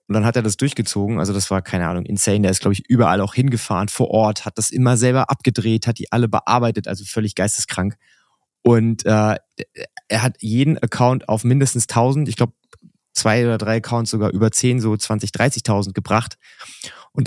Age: 20-39